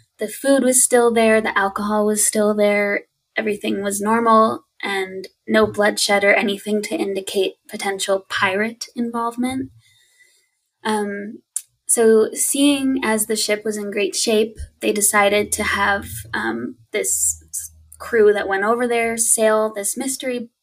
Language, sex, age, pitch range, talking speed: English, female, 20-39, 205-255 Hz, 135 wpm